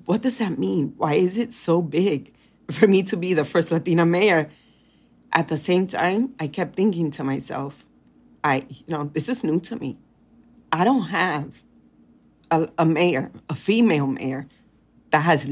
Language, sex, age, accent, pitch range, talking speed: English, female, 40-59, American, 150-200 Hz, 175 wpm